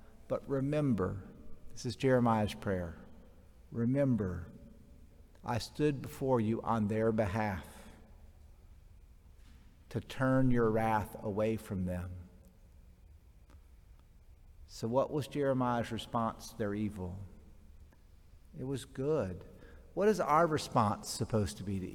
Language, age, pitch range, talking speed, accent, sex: English, 50-69, 80-130 Hz, 110 wpm, American, male